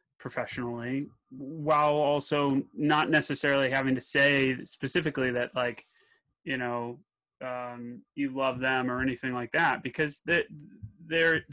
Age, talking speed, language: 30-49, 130 wpm, English